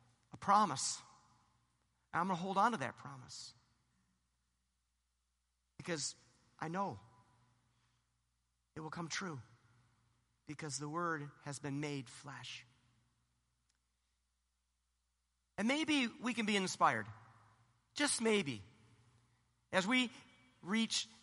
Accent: American